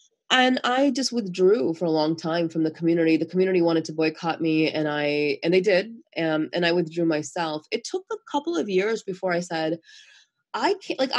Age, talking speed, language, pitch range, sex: 20-39, 210 wpm, English, 145-210 Hz, female